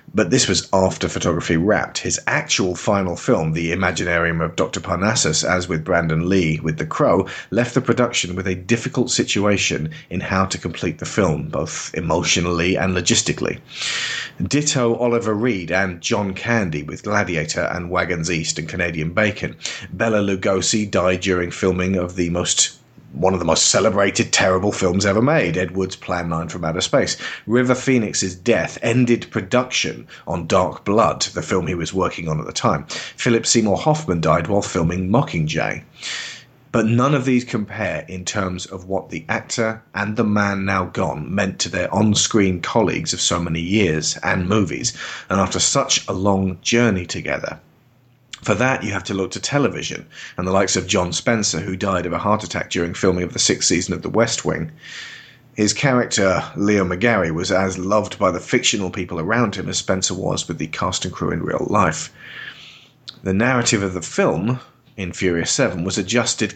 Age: 30-49